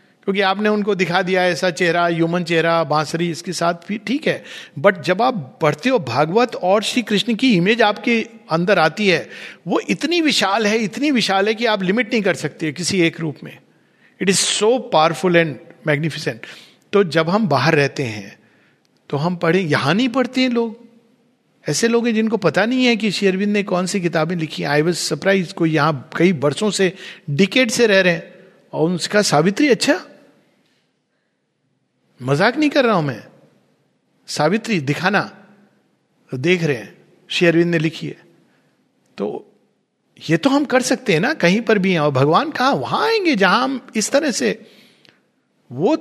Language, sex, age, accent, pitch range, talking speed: Hindi, male, 50-69, native, 165-225 Hz, 175 wpm